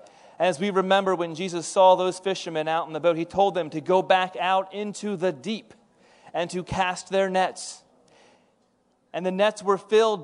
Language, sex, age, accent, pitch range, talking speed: English, male, 30-49, American, 185-220 Hz, 190 wpm